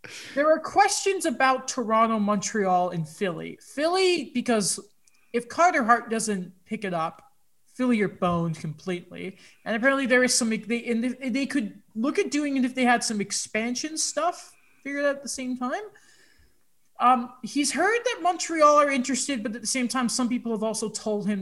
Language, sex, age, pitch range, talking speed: English, male, 20-39, 190-260 Hz, 180 wpm